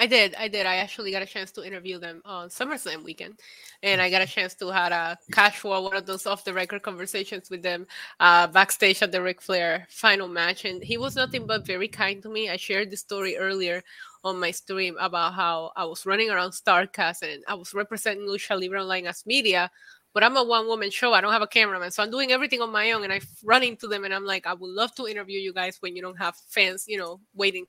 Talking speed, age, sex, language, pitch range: 250 wpm, 20-39, female, English, 190-235 Hz